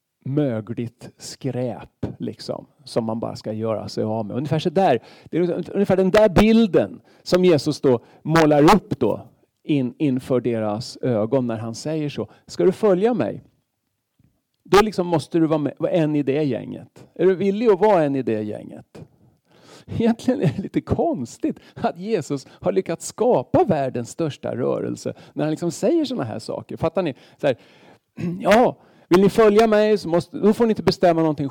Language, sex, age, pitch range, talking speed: Swedish, male, 40-59, 125-200 Hz, 180 wpm